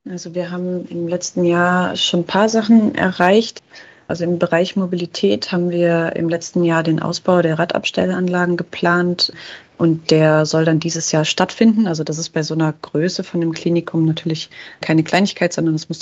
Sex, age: female, 30-49